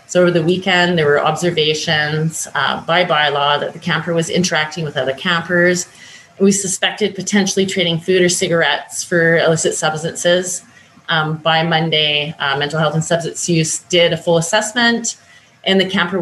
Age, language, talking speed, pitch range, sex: 30-49, English, 165 wpm, 150-185 Hz, female